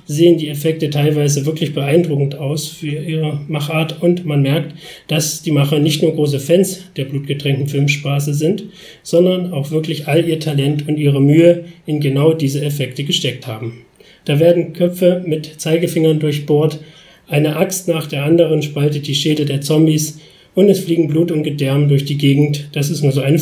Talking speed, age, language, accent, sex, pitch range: 175 wpm, 40-59, German, German, male, 140-165 Hz